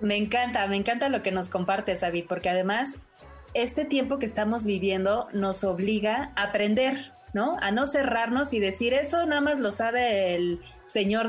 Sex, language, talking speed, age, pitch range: female, Spanish, 175 wpm, 30-49, 190-230 Hz